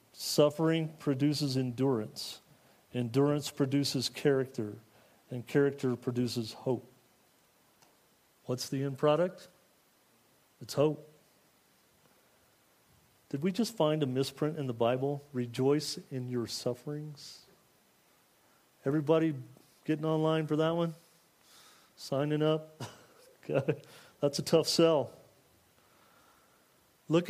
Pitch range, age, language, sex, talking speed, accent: 125-155 Hz, 40-59, English, male, 90 wpm, American